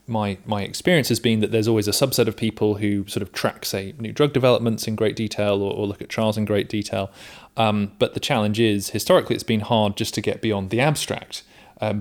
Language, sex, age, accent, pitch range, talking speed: English, male, 30-49, British, 100-120 Hz, 235 wpm